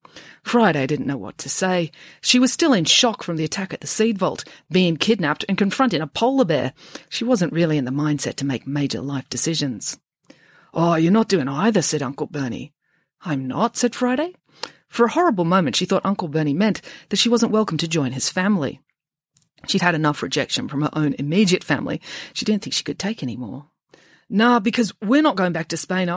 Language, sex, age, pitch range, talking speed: English, female, 40-59, 155-225 Hz, 205 wpm